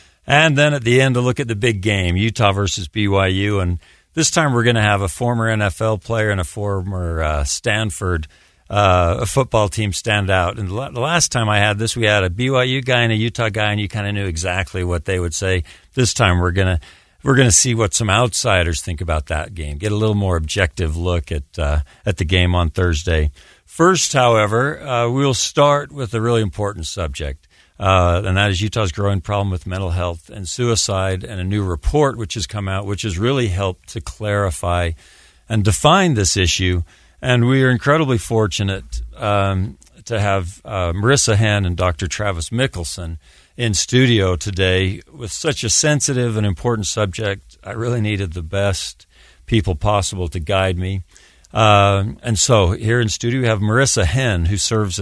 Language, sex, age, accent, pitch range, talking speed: English, male, 60-79, American, 90-115 Hz, 190 wpm